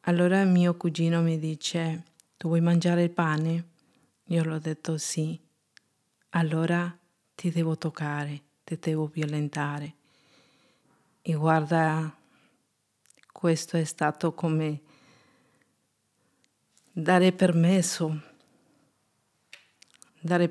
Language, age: Italian, 50-69